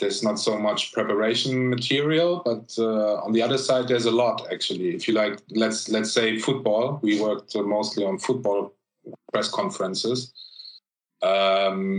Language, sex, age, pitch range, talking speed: English, male, 30-49, 105-125 Hz, 160 wpm